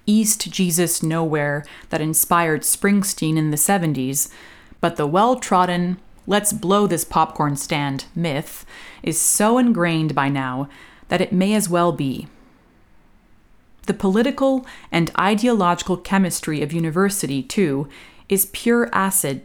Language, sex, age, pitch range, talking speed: English, female, 30-49, 155-195 Hz, 125 wpm